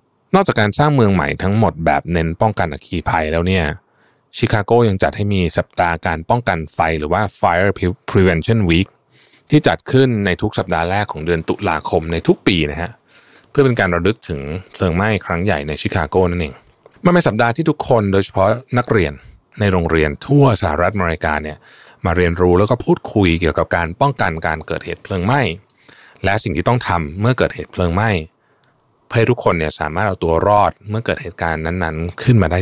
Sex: male